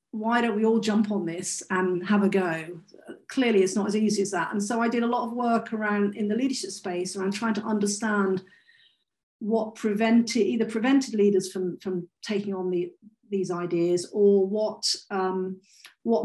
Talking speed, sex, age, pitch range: 190 wpm, female, 40-59, 195-230 Hz